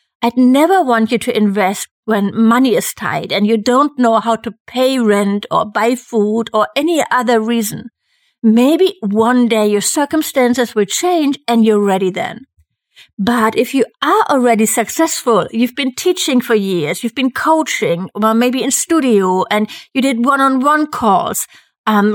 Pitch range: 220-270 Hz